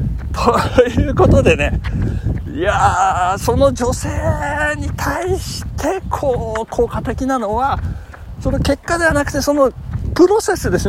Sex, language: male, Japanese